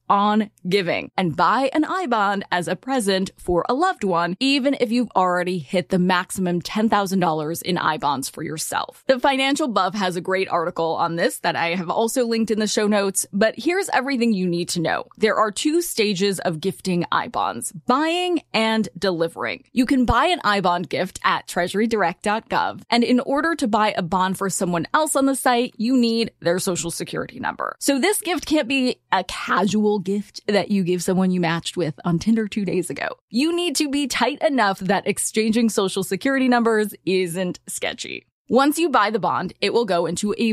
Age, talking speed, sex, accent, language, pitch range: 20-39, 195 wpm, female, American, English, 180-255 Hz